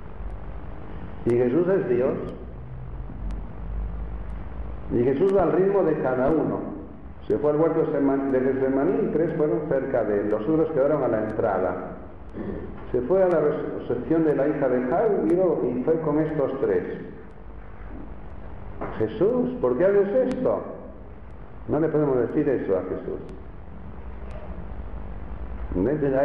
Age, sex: 60-79, male